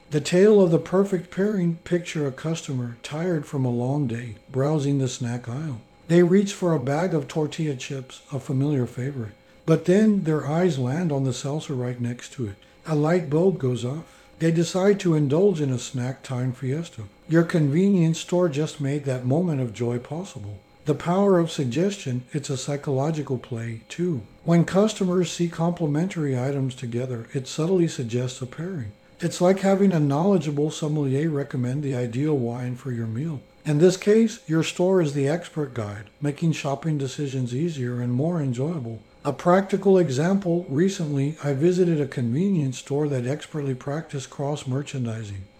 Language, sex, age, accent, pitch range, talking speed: English, male, 60-79, American, 130-170 Hz, 165 wpm